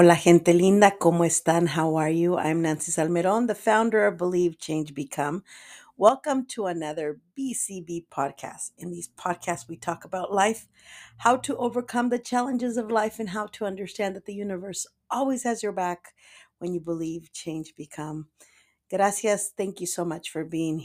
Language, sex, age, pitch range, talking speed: English, female, 50-69, 160-200 Hz, 170 wpm